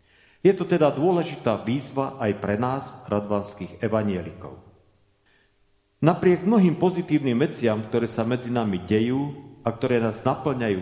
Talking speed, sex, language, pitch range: 130 wpm, male, Czech, 105-140 Hz